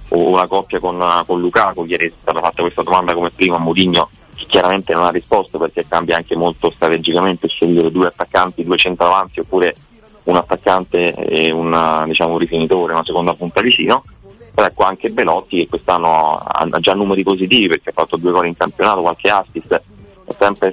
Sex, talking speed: male, 180 wpm